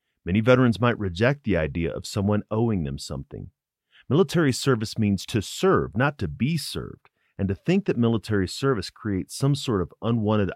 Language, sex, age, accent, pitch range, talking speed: English, male, 40-59, American, 90-125 Hz, 175 wpm